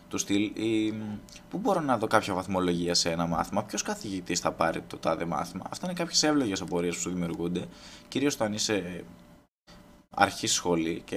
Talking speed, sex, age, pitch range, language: 160 wpm, male, 20-39, 85-105 Hz, Greek